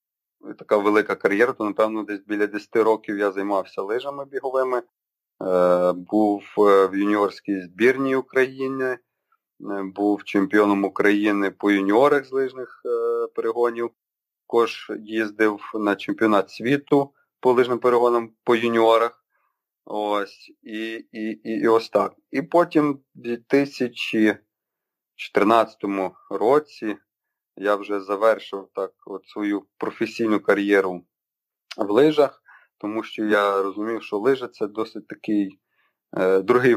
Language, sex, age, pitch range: Ukrainian, male, 30-49, 100-125 Hz